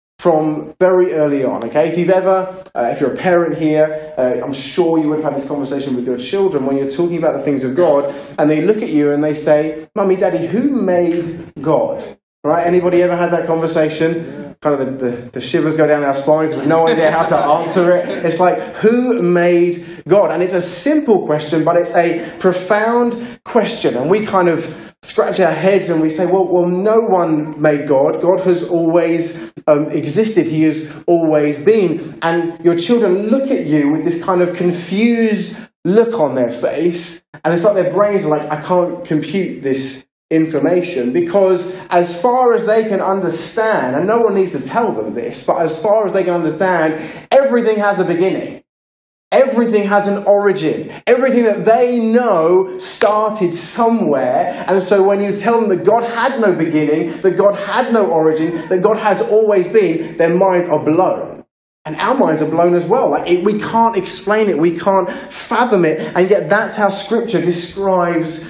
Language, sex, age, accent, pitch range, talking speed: English, male, 20-39, British, 155-200 Hz, 195 wpm